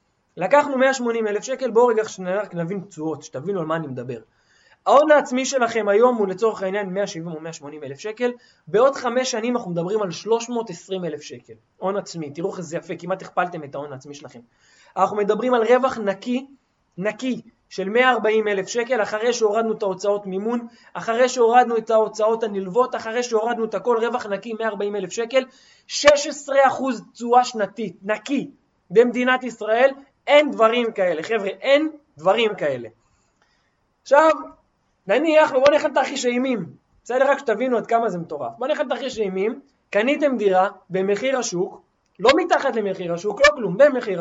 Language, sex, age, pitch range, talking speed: Hebrew, male, 20-39, 195-260 Hz, 150 wpm